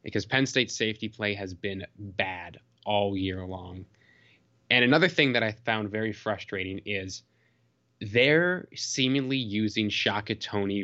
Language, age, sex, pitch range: English, 20-39, male, 105-125 Hz